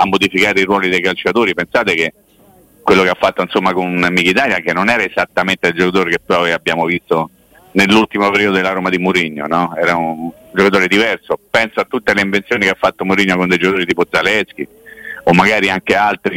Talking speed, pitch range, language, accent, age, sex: 195 wpm, 90-135 Hz, Italian, native, 50-69, male